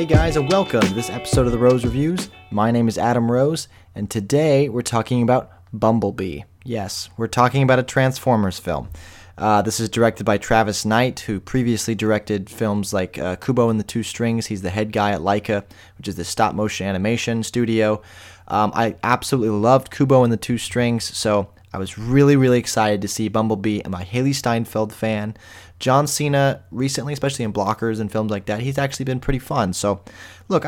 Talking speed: 195 wpm